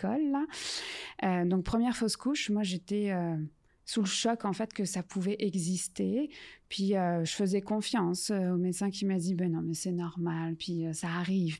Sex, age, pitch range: female, 20-39, 180-210 Hz